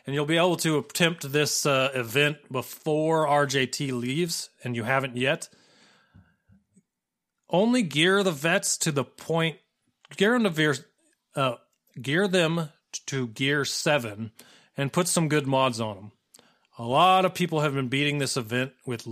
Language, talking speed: English, 155 wpm